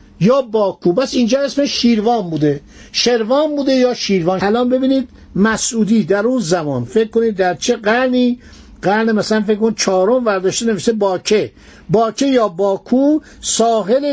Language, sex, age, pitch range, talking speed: Persian, male, 60-79, 185-230 Hz, 140 wpm